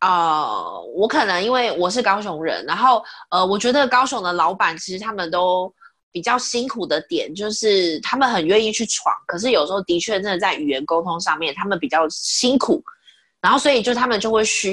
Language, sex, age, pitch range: Chinese, female, 20-39, 170-230 Hz